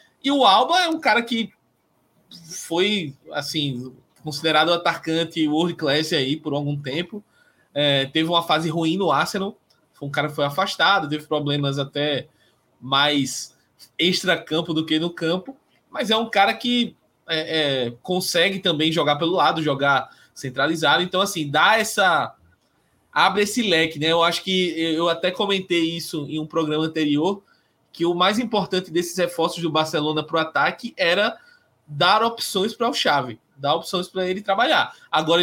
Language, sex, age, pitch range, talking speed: Portuguese, male, 20-39, 145-185 Hz, 165 wpm